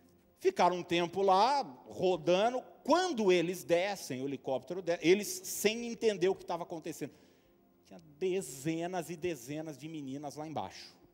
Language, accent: Portuguese, Brazilian